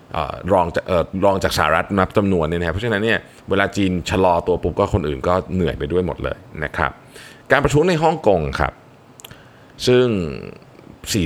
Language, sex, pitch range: Thai, male, 80-125 Hz